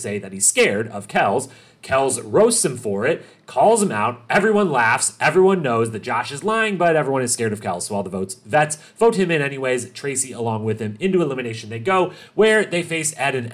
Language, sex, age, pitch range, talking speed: English, male, 30-49, 115-175 Hz, 220 wpm